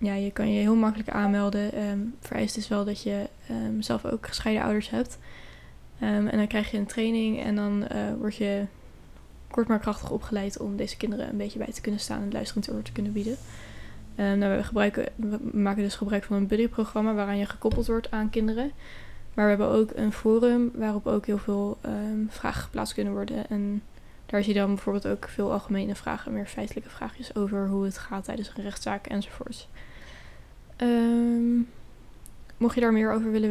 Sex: female